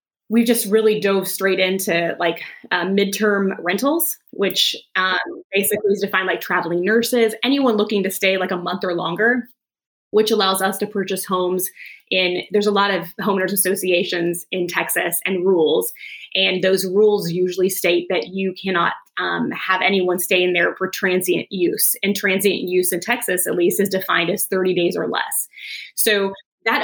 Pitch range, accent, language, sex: 185-220 Hz, American, English, female